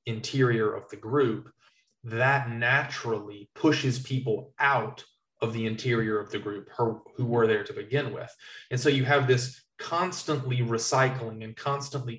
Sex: male